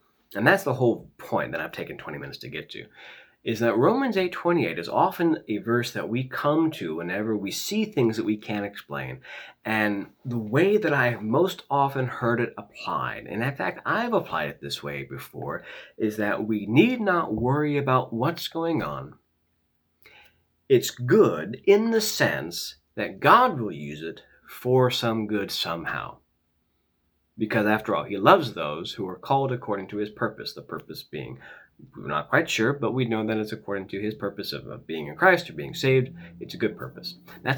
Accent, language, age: American, English, 30-49